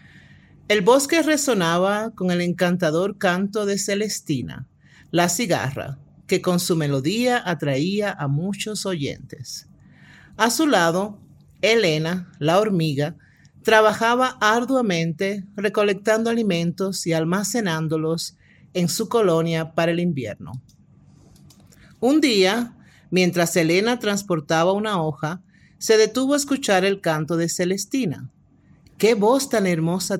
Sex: male